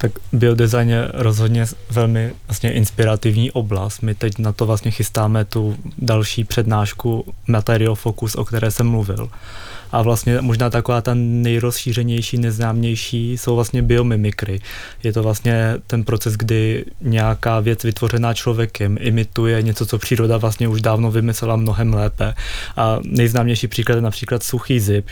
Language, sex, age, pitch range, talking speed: Czech, male, 20-39, 110-120 Hz, 145 wpm